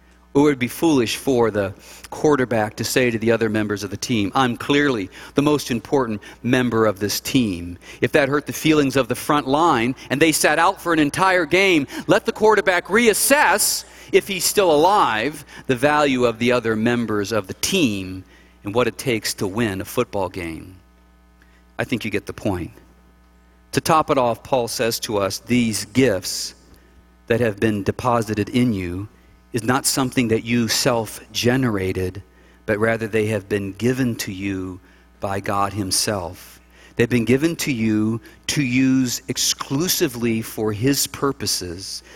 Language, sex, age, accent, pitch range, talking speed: English, male, 40-59, American, 100-135 Hz, 170 wpm